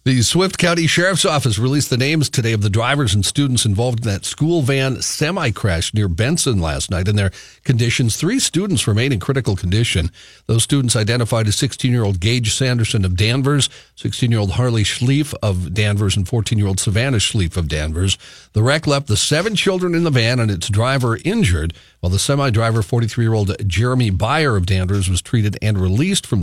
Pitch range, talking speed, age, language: 95-130 Hz, 180 wpm, 50-69, English